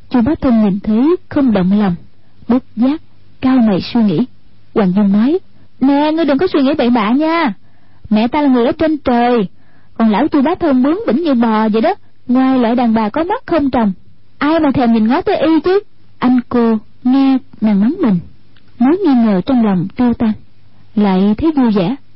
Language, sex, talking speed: Vietnamese, female, 210 wpm